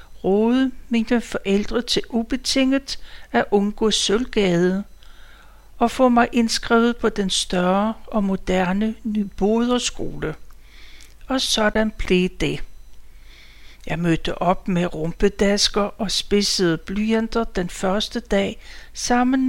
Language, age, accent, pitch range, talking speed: Danish, 60-79, native, 190-235 Hz, 105 wpm